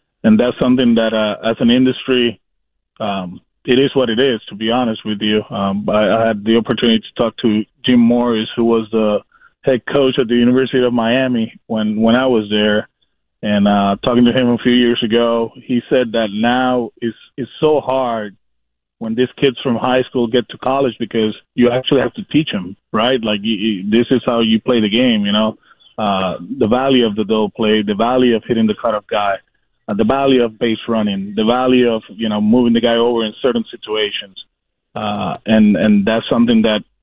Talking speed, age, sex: 205 wpm, 20-39, male